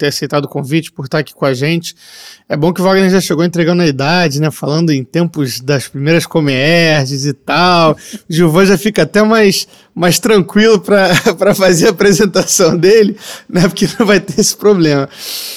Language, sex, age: Portuguese, male, 20-39